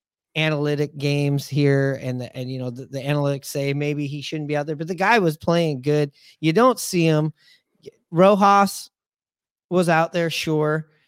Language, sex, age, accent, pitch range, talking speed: English, male, 30-49, American, 135-160 Hz, 175 wpm